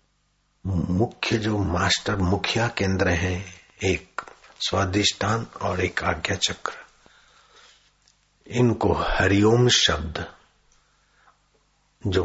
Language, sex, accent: Hindi, male, native